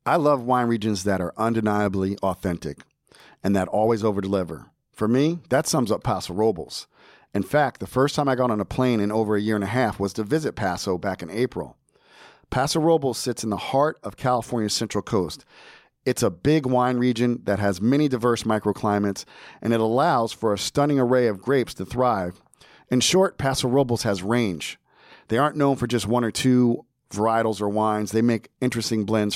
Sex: male